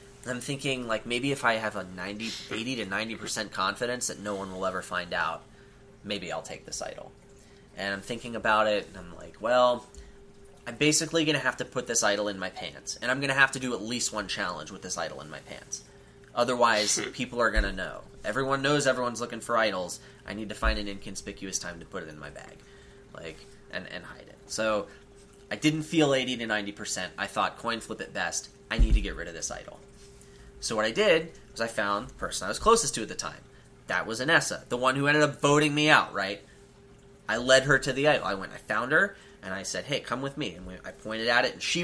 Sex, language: male, English